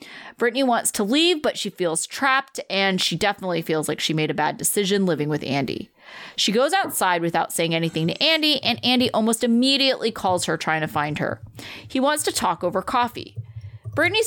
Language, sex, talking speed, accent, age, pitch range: English, female, 195 wpm, American, 30-49, 170-235 Hz